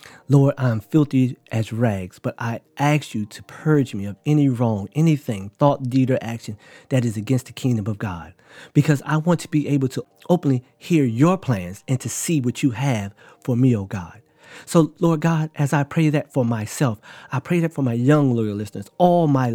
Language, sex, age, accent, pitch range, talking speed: English, male, 40-59, American, 110-150 Hz, 210 wpm